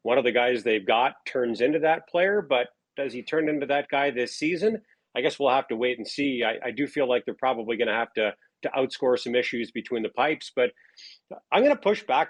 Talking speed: 250 wpm